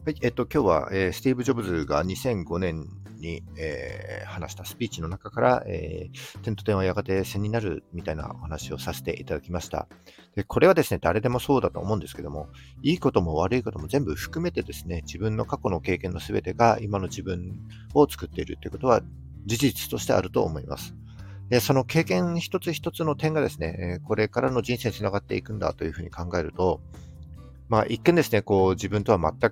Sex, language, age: male, Japanese, 50-69